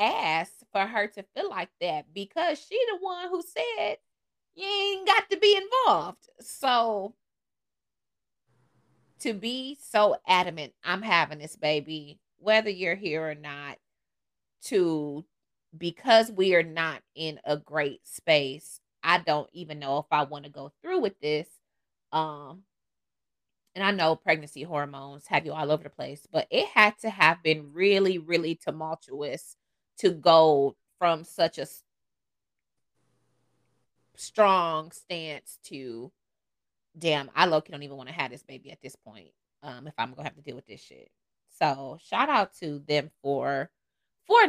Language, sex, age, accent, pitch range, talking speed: English, female, 30-49, American, 150-235 Hz, 155 wpm